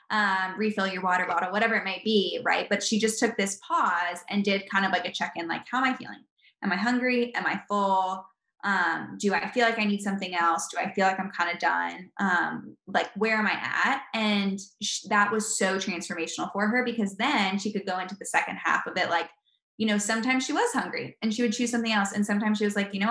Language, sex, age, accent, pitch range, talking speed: English, female, 10-29, American, 185-220 Hz, 245 wpm